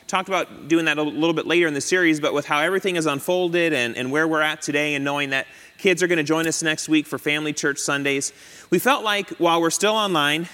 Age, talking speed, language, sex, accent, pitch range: 30-49, 255 wpm, English, male, American, 140-170 Hz